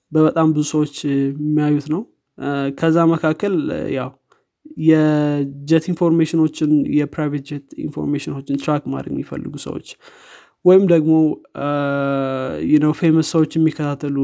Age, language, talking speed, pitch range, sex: 20-39, Amharic, 95 wpm, 140-160 Hz, male